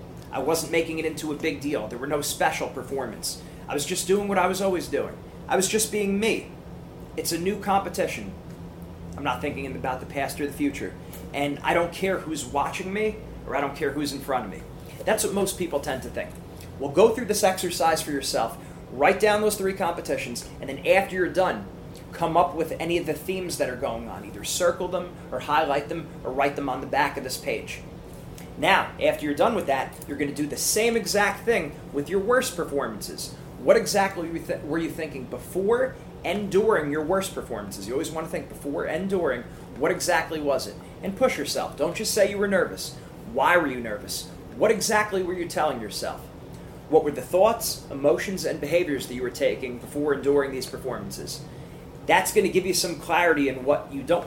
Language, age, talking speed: English, 30-49, 215 wpm